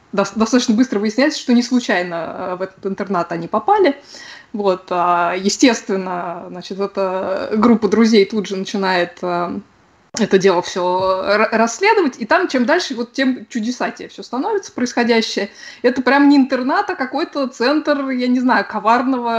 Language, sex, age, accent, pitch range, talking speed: Russian, female, 20-39, native, 200-260 Hz, 140 wpm